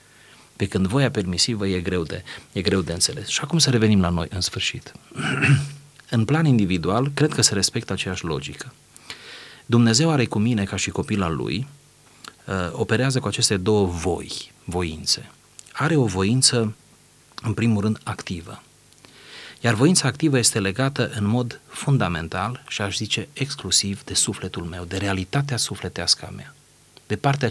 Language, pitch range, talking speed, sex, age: Romanian, 95-125 Hz, 155 wpm, male, 30-49